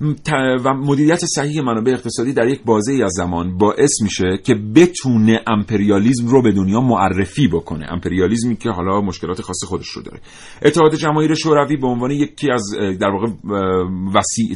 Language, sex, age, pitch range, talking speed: Persian, male, 40-59, 95-125 Hz, 165 wpm